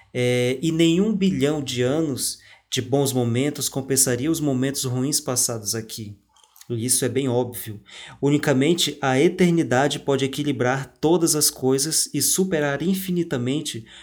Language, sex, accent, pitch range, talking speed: Portuguese, male, Brazilian, 125-155 Hz, 130 wpm